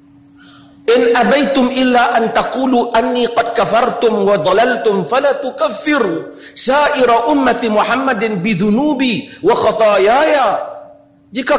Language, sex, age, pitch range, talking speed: Malay, male, 40-59, 190-255 Hz, 90 wpm